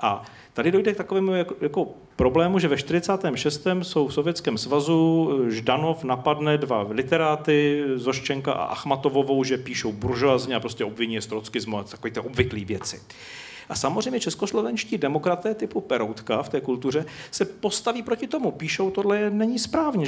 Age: 40-59